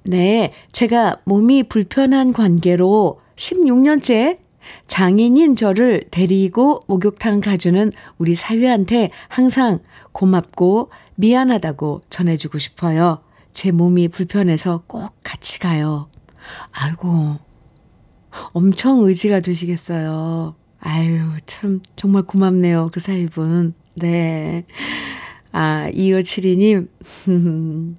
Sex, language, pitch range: female, Korean, 170-230 Hz